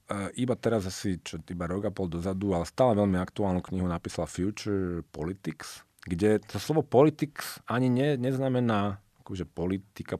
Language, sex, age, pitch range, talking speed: Slovak, male, 40-59, 85-120 Hz, 145 wpm